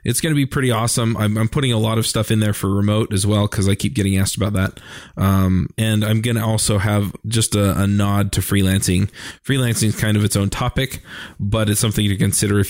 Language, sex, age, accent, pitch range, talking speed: English, male, 20-39, American, 100-120 Hz, 245 wpm